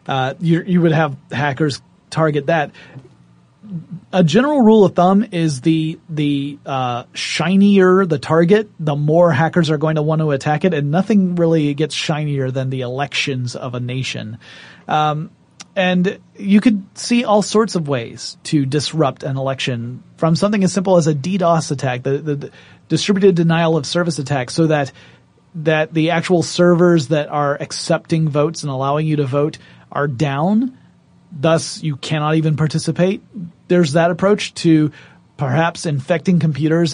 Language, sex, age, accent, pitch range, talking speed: English, male, 30-49, American, 140-175 Hz, 160 wpm